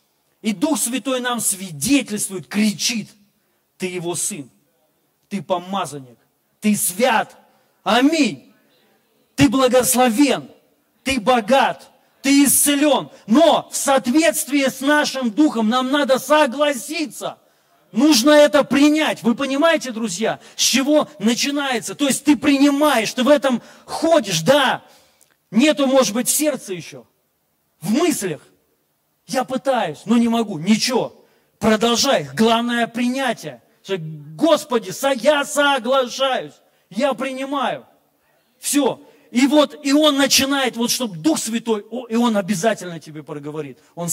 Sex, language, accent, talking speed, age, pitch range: male, Russian, native, 120 wpm, 40-59, 180-270 Hz